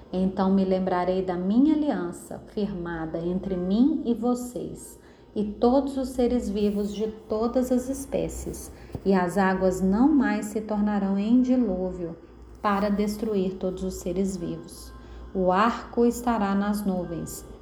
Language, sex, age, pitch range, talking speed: Portuguese, female, 30-49, 185-245 Hz, 135 wpm